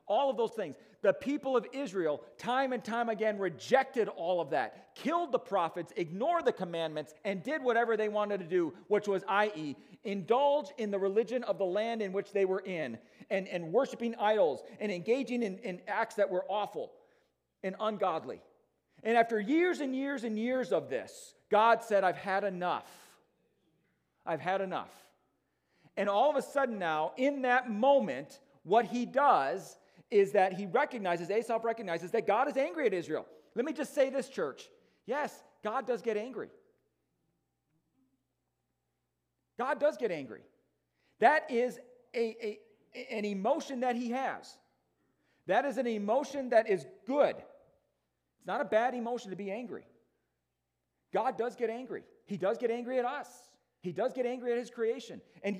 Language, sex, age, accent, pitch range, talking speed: English, male, 40-59, American, 195-260 Hz, 165 wpm